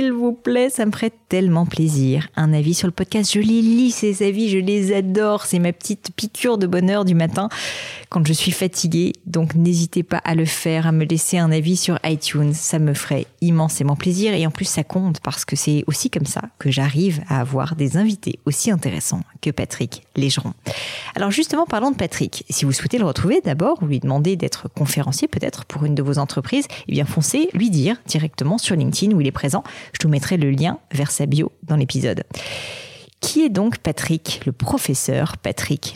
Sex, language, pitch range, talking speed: female, French, 145-185 Hz, 205 wpm